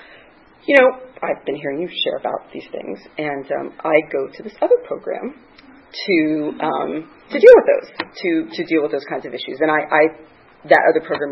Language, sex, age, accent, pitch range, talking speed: English, female, 30-49, American, 155-200 Hz, 200 wpm